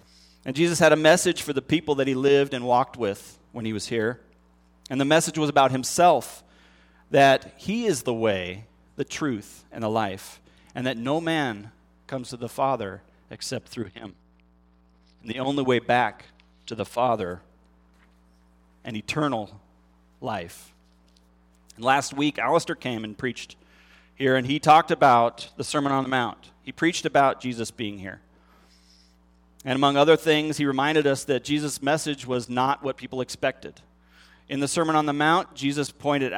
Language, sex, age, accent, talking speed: English, male, 40-59, American, 165 wpm